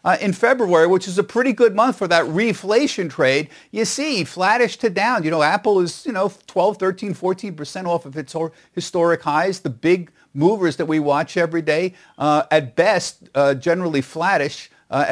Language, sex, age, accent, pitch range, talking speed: English, male, 50-69, American, 145-190 Hz, 190 wpm